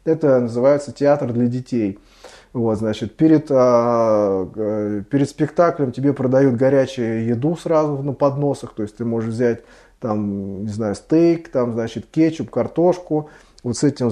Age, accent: 20-39, native